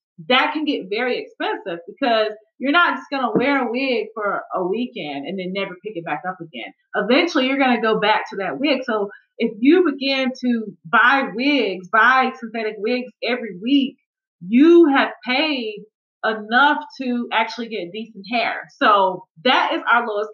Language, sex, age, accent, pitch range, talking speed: English, female, 30-49, American, 200-260 Hz, 175 wpm